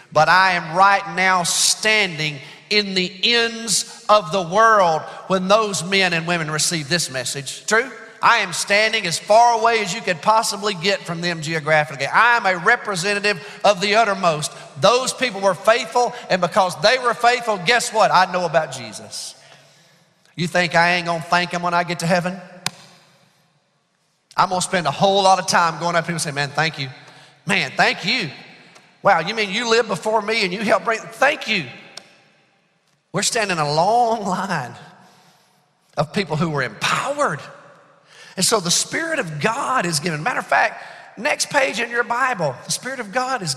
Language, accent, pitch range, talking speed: English, American, 170-230 Hz, 180 wpm